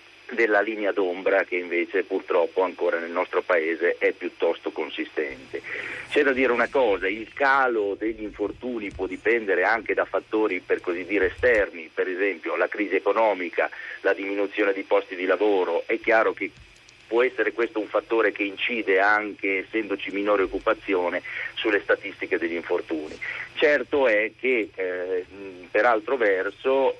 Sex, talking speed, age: male, 150 wpm, 40-59